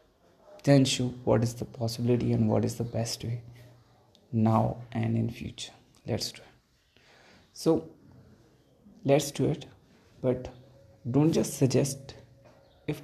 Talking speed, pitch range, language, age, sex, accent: 130 wpm, 120-145 Hz, English, 20-39, male, Indian